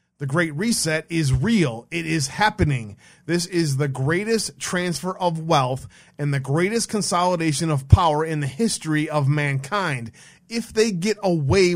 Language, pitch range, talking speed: English, 145-175 Hz, 155 wpm